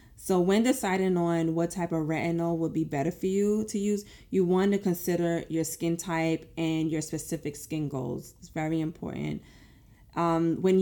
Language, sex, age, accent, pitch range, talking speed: English, female, 20-39, American, 160-185 Hz, 175 wpm